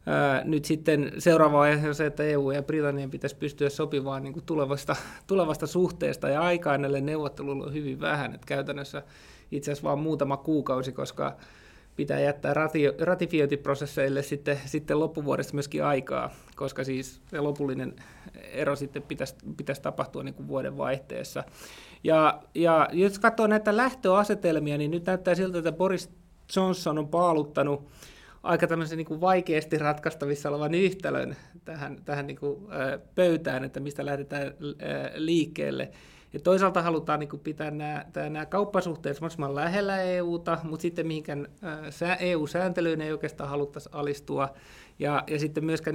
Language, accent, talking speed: Finnish, native, 140 wpm